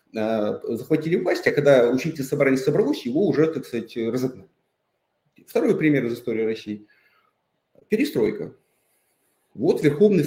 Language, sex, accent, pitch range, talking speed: Russian, male, native, 125-175 Hz, 115 wpm